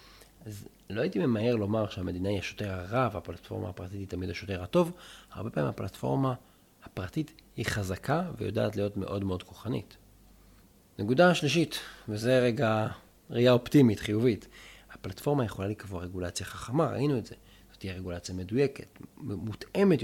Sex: male